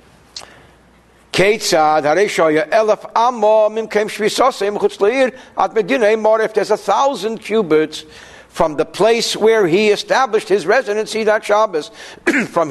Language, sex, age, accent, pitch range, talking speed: English, male, 60-79, American, 190-265 Hz, 70 wpm